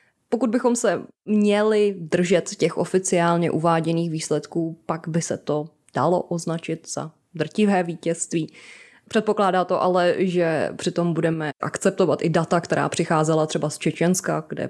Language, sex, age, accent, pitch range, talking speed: Czech, female, 20-39, native, 160-185 Hz, 135 wpm